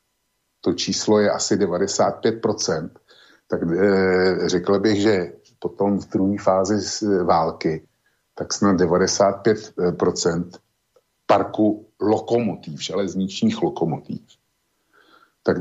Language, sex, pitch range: Slovak, male, 90-100 Hz